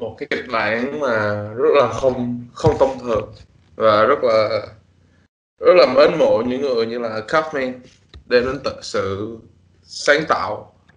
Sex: male